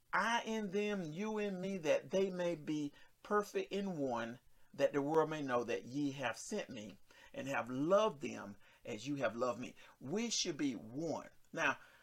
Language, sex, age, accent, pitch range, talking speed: English, male, 50-69, American, 140-195 Hz, 185 wpm